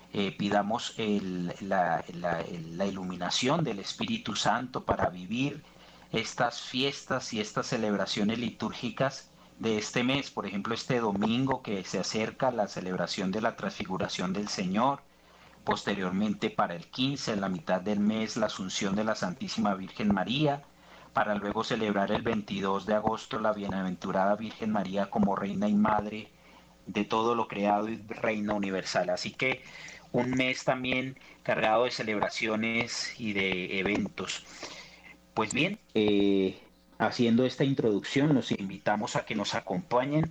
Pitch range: 100-120 Hz